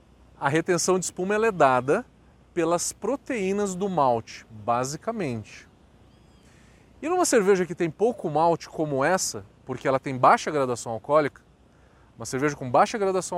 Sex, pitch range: male, 140-210 Hz